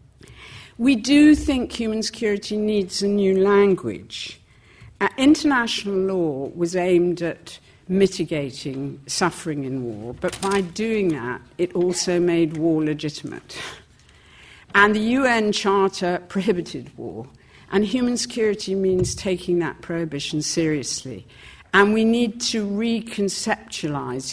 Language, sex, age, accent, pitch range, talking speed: English, female, 60-79, British, 140-195 Hz, 115 wpm